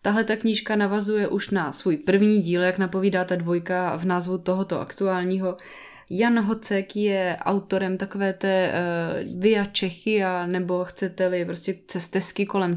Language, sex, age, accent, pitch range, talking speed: Czech, female, 20-39, native, 180-205 Hz, 145 wpm